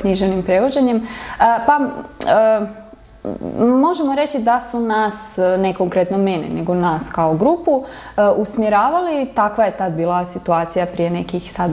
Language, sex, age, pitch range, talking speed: English, female, 20-39, 180-235 Hz, 140 wpm